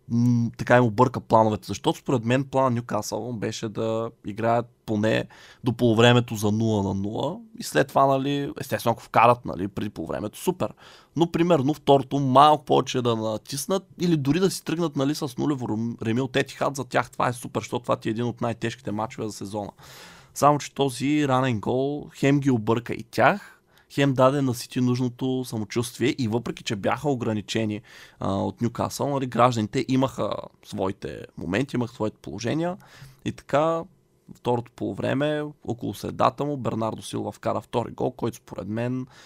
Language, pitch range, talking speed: Bulgarian, 110-140 Hz, 165 wpm